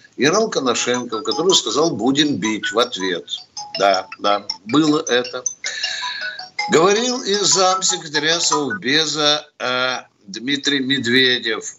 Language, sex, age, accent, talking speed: Russian, male, 60-79, native, 90 wpm